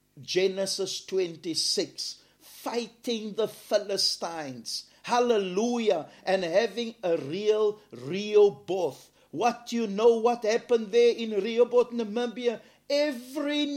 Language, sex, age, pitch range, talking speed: English, male, 50-69, 215-265 Hz, 100 wpm